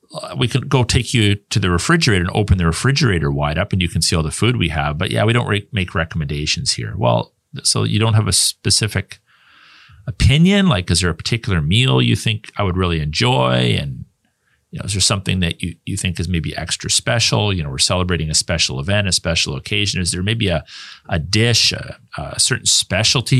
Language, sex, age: English, male, 40-59